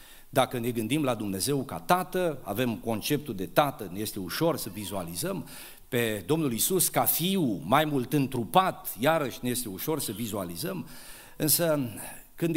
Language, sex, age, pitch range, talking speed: Romanian, male, 50-69, 125-175 Hz, 155 wpm